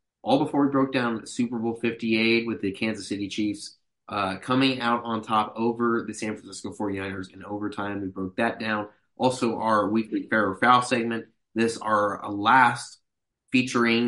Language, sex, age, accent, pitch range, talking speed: English, male, 20-39, American, 105-130 Hz, 175 wpm